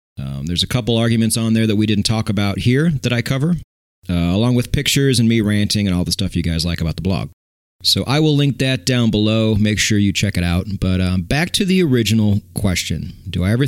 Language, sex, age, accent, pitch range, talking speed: English, male, 40-59, American, 95-125 Hz, 245 wpm